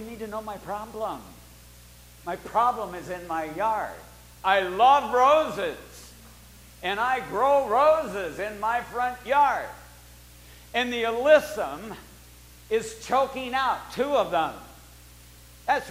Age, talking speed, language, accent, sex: 60-79, 120 wpm, English, American, male